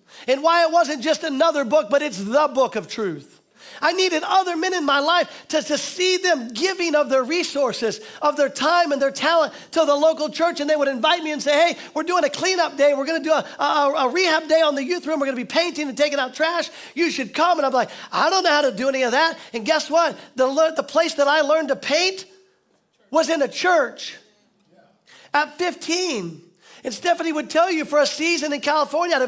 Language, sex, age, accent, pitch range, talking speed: English, male, 40-59, American, 265-325 Hz, 240 wpm